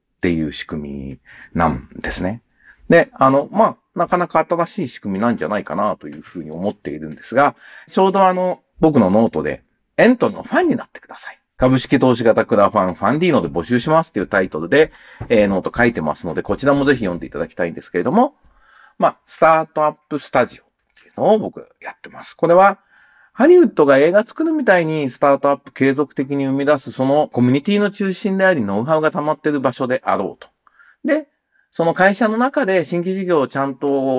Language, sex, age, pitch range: Japanese, male, 40-59, 135-215 Hz